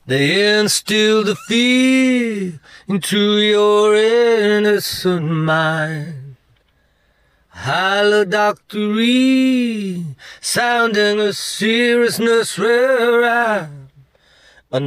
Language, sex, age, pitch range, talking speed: English, male, 30-49, 155-220 Hz, 55 wpm